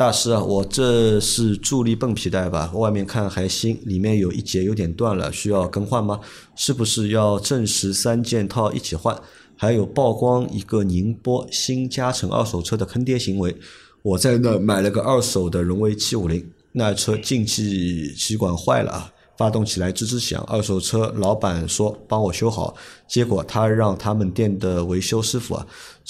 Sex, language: male, Chinese